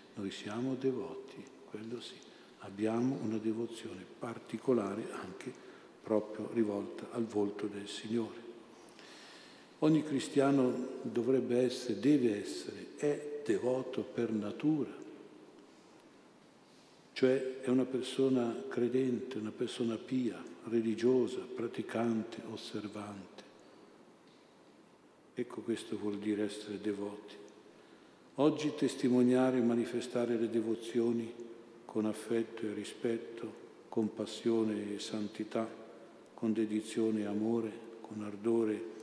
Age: 50-69